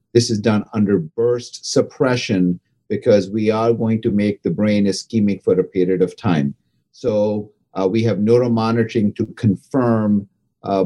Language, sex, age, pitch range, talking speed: English, male, 50-69, 105-120 Hz, 155 wpm